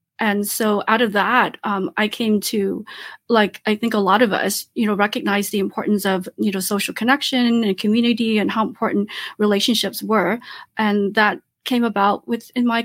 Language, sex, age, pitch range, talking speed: English, female, 30-49, 215-250 Hz, 180 wpm